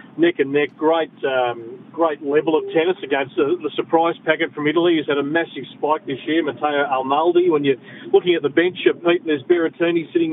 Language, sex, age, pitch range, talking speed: English, male, 40-59, 140-170 Hz, 210 wpm